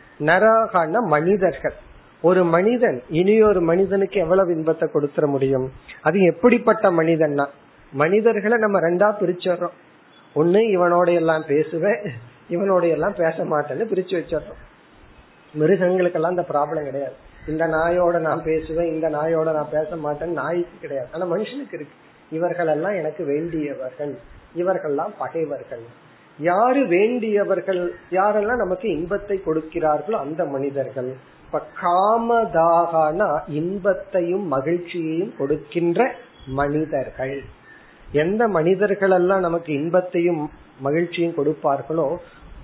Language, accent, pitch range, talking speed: Tamil, native, 155-195 Hz, 85 wpm